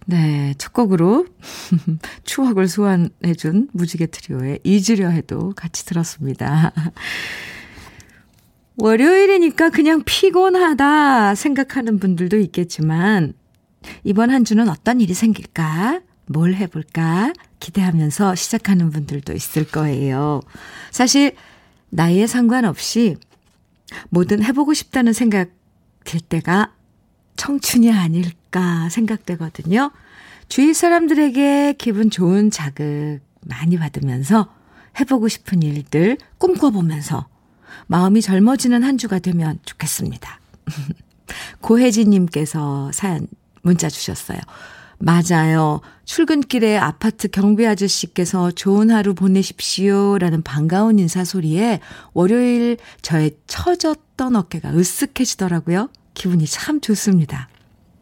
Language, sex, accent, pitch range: Korean, female, native, 160-230 Hz